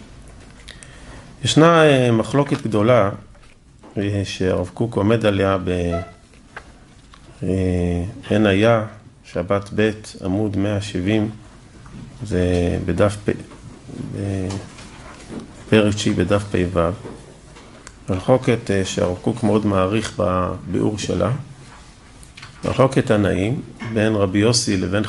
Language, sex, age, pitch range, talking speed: Hebrew, male, 40-59, 100-130 Hz, 75 wpm